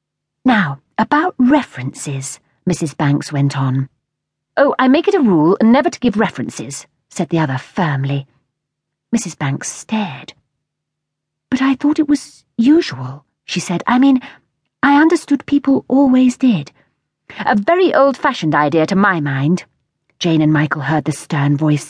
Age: 40-59